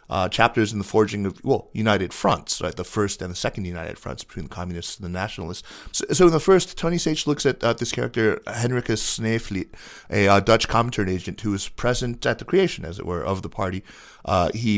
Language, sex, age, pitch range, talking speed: English, male, 30-49, 95-115 Hz, 225 wpm